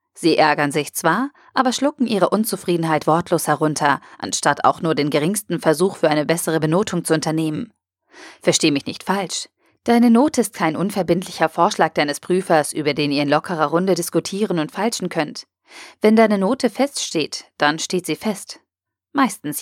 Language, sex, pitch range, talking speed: German, female, 155-210 Hz, 160 wpm